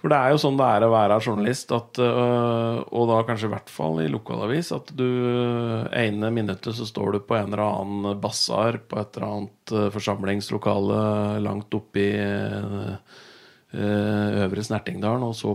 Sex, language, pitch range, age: male, English, 100-120 Hz, 30-49